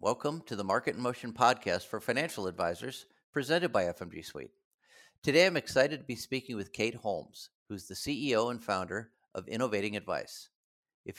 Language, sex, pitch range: English, male, 100-145 Hz